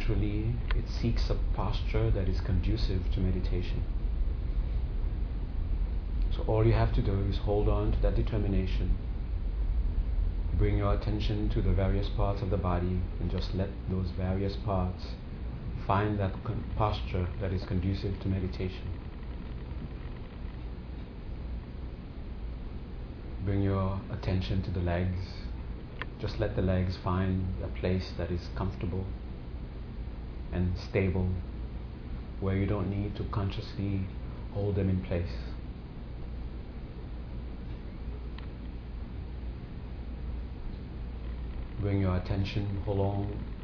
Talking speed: 105 wpm